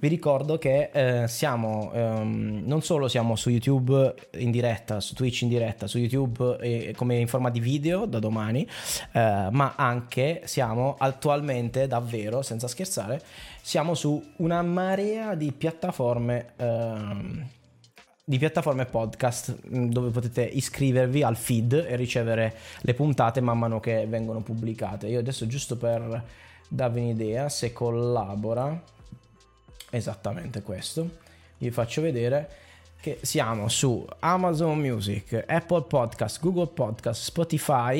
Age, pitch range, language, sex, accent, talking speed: 20-39, 115-140 Hz, English, male, Italian, 130 wpm